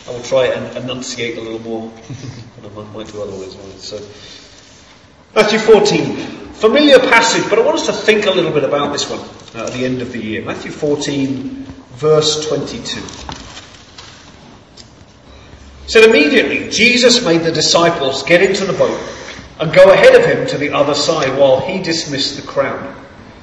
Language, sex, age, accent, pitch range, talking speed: English, male, 40-59, British, 130-210 Hz, 165 wpm